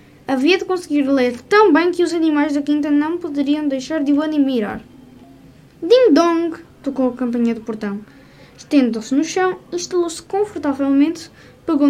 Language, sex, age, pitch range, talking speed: Portuguese, female, 10-29, 260-345 Hz, 165 wpm